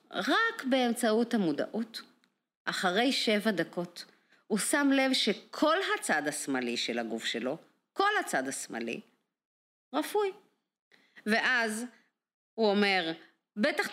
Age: 50-69